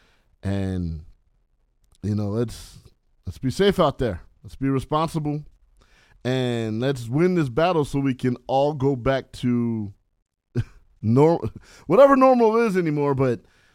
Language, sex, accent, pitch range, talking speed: English, male, American, 115-170 Hz, 130 wpm